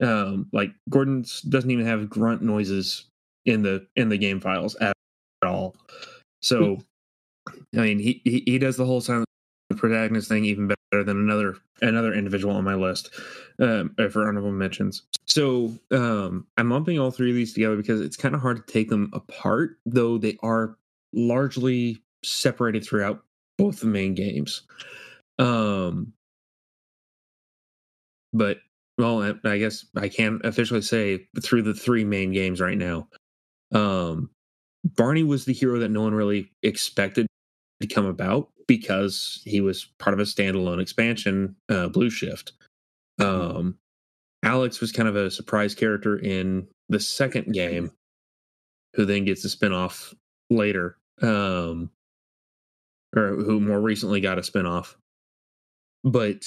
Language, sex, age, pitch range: English, male, 20-39, 95-115 Hz